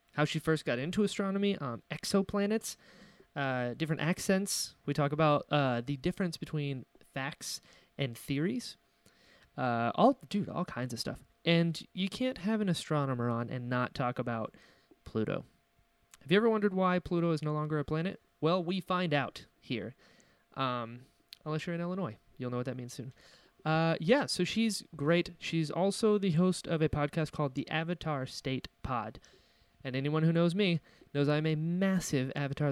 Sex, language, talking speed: male, English, 170 wpm